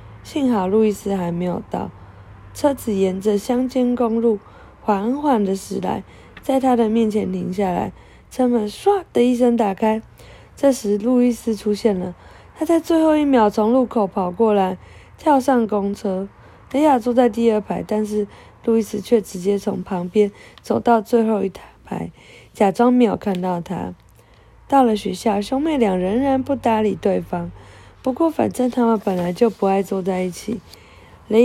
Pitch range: 195-245 Hz